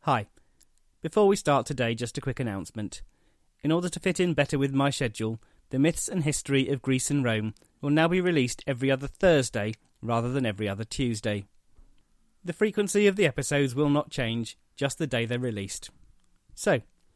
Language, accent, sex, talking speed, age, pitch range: English, British, male, 180 wpm, 30-49, 110-155 Hz